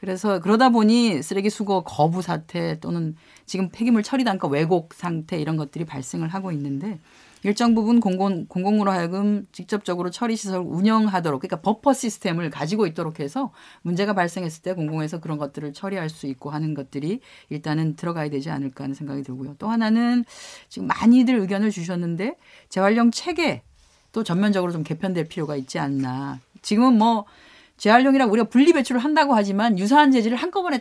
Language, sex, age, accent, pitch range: Korean, female, 30-49, native, 165-230 Hz